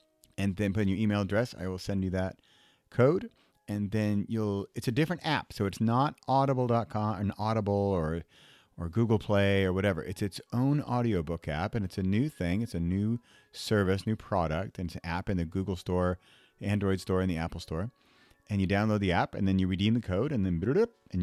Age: 40-59